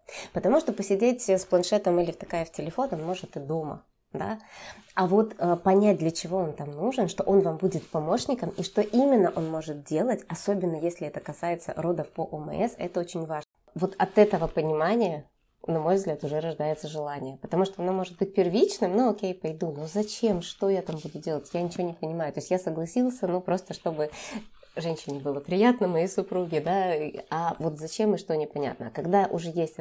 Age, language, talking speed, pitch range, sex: 20-39, Russian, 195 wpm, 155-190 Hz, female